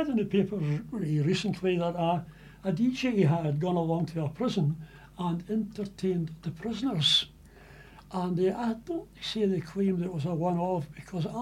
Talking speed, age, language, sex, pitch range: 165 wpm, 60-79, English, male, 160-205 Hz